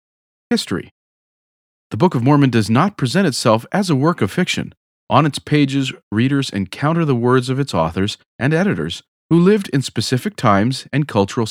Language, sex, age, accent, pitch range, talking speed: English, male, 40-59, American, 110-150 Hz, 170 wpm